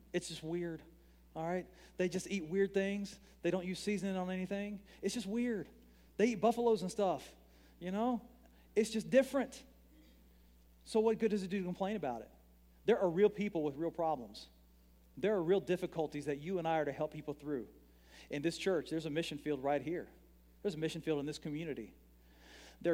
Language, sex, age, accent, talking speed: English, male, 40-59, American, 200 wpm